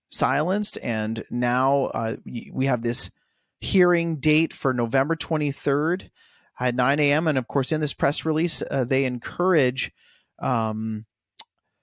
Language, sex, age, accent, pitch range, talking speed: English, male, 30-49, American, 125-155 Hz, 130 wpm